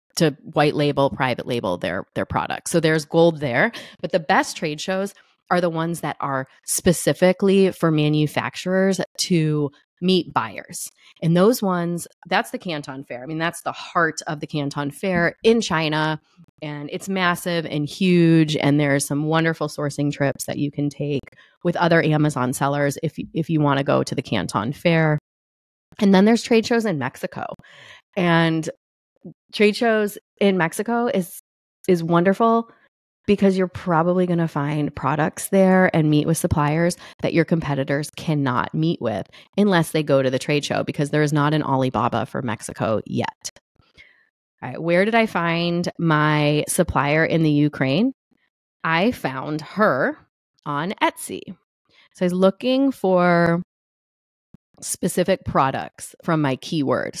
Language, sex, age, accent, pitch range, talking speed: English, female, 30-49, American, 145-185 Hz, 155 wpm